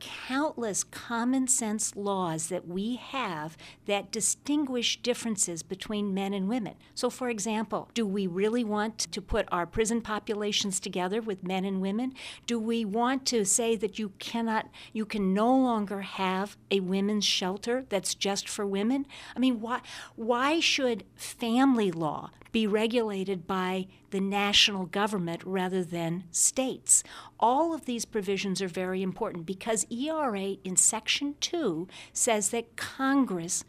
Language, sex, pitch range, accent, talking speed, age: English, female, 185-230 Hz, American, 145 wpm, 50-69